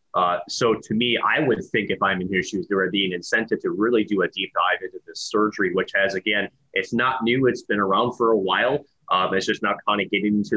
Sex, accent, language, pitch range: male, American, English, 100-120 Hz